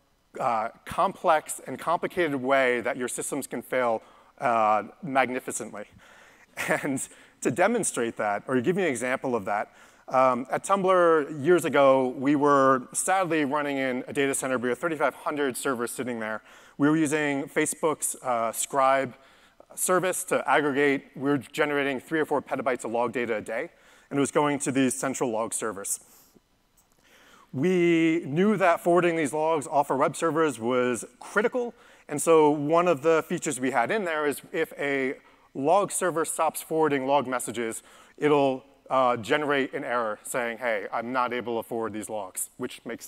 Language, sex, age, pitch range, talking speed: English, male, 30-49, 125-160 Hz, 165 wpm